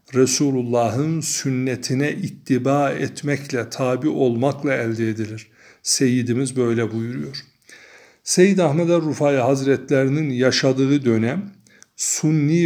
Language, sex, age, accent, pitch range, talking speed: Turkish, male, 60-79, native, 120-145 Hz, 85 wpm